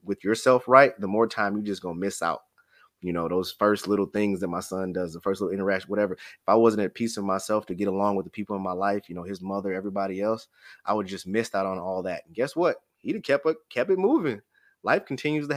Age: 20-39